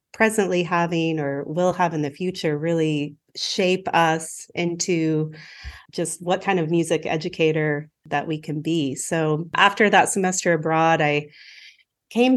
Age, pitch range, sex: 30-49, 155-185 Hz, female